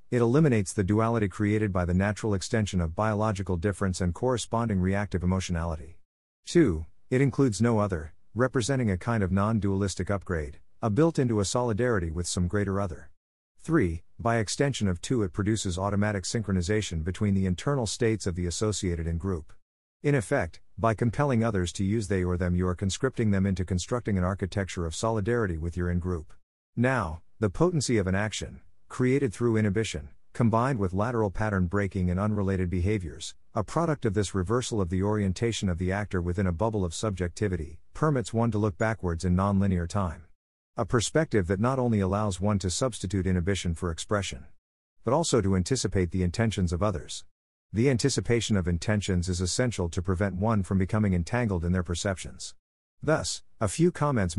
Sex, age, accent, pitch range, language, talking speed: male, 50-69, American, 90-115 Hz, English, 170 wpm